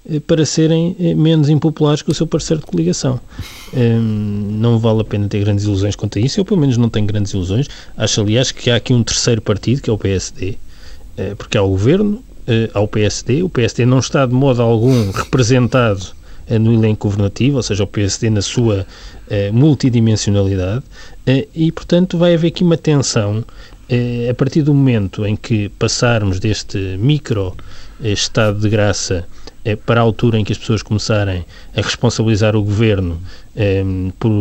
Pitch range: 100-130 Hz